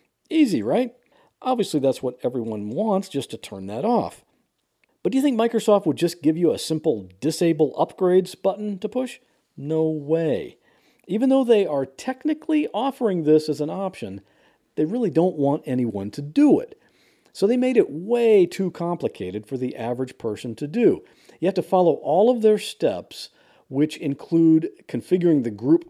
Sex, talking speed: male, 170 wpm